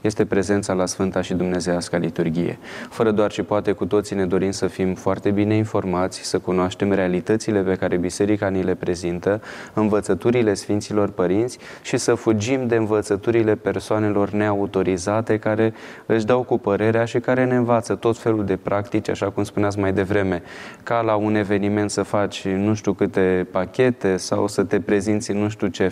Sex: male